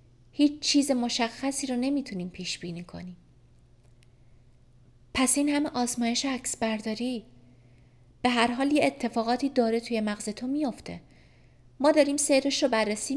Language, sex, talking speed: Persian, female, 125 wpm